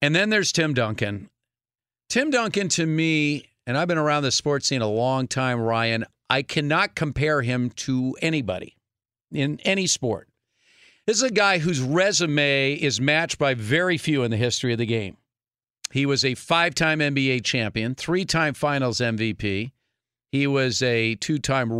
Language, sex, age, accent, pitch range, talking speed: English, male, 50-69, American, 120-165 Hz, 160 wpm